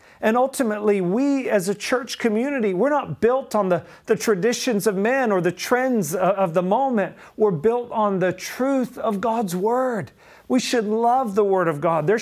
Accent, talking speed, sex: American, 185 wpm, male